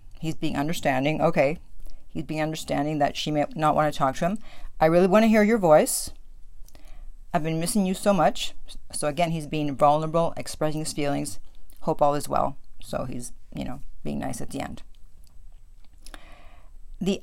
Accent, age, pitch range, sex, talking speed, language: American, 50-69, 140-195 Hz, female, 180 wpm, English